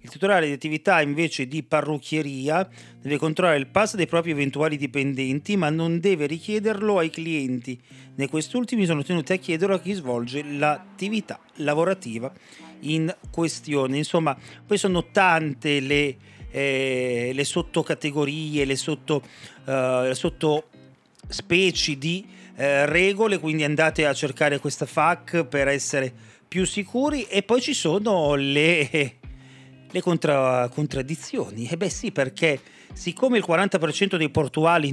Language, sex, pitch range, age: Italian, male, 140-180 Hz, 40-59